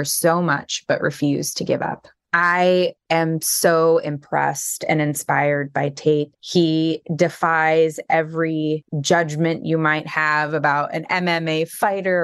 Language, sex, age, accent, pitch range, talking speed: English, female, 20-39, American, 145-165 Hz, 130 wpm